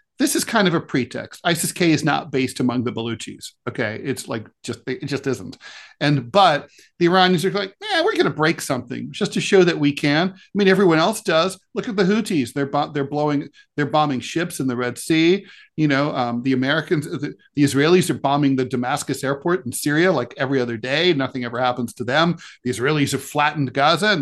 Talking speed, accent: 215 wpm, American